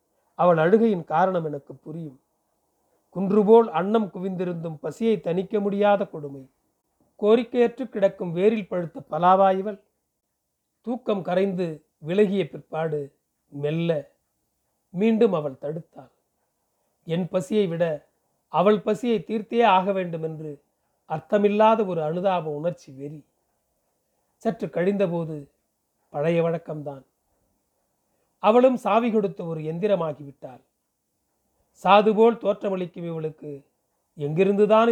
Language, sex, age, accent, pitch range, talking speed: Tamil, male, 40-59, native, 155-205 Hz, 90 wpm